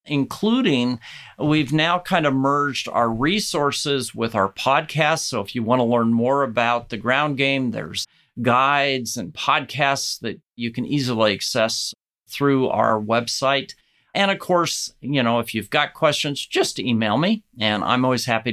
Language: English